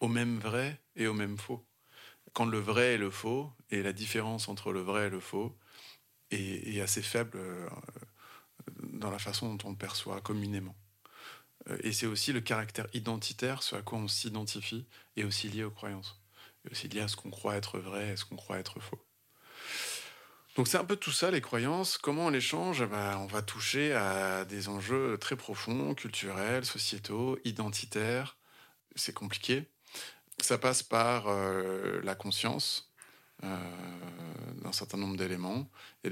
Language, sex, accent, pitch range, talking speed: French, male, French, 95-115 Hz, 175 wpm